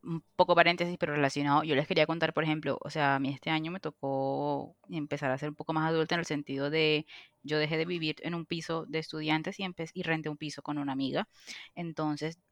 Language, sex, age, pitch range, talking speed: Spanish, female, 20-39, 150-175 Hz, 235 wpm